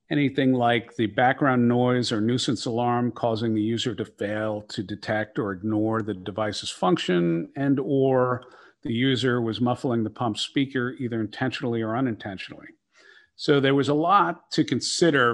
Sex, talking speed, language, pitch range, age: male, 155 wpm, English, 110-135 Hz, 50-69